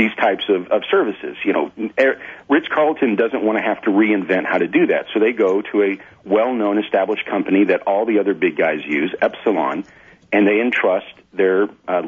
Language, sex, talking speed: English, male, 210 wpm